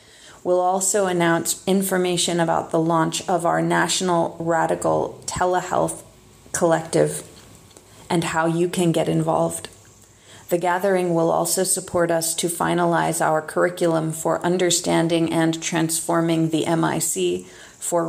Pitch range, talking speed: 160-180 Hz, 120 wpm